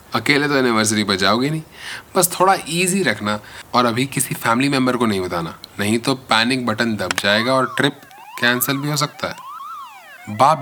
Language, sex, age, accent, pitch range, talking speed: Hindi, male, 20-39, native, 110-150 Hz, 175 wpm